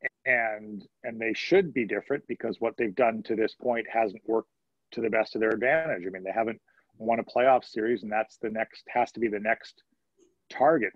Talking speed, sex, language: 215 wpm, male, English